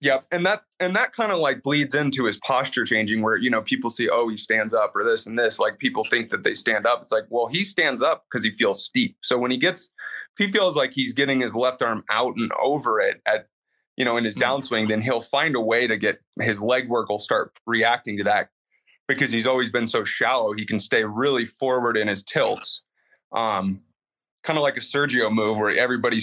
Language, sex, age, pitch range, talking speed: English, male, 20-39, 115-145 Hz, 240 wpm